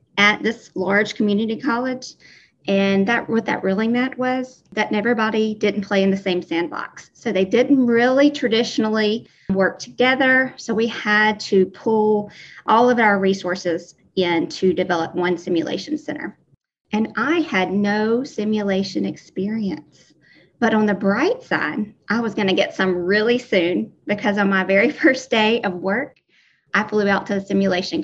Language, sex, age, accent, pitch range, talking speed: English, female, 30-49, American, 190-230 Hz, 160 wpm